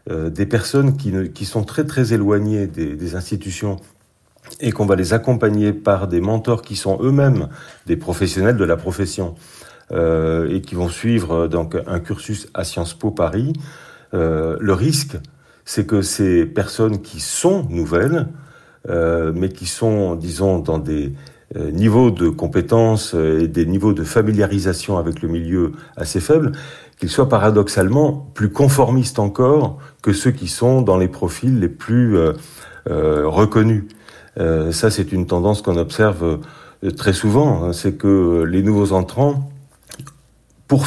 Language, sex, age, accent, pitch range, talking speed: French, male, 40-59, French, 85-120 Hz, 150 wpm